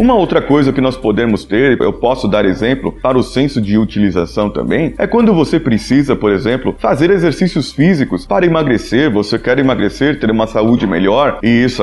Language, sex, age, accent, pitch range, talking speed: Portuguese, male, 30-49, Brazilian, 115-150 Hz, 190 wpm